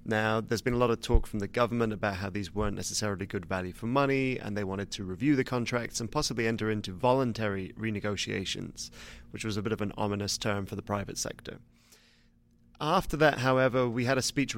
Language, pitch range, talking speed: English, 105-120 Hz, 210 wpm